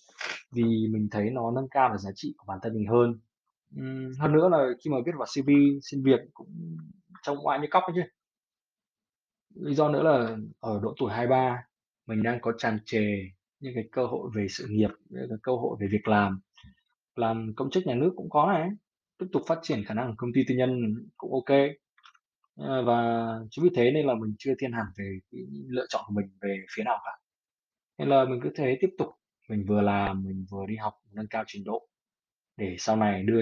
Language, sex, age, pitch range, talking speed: Vietnamese, male, 20-39, 105-130 Hz, 215 wpm